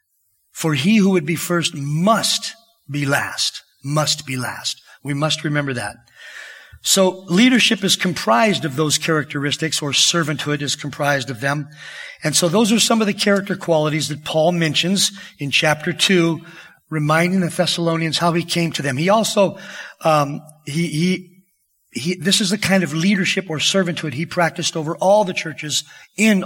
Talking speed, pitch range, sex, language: 165 wpm, 155-190 Hz, male, English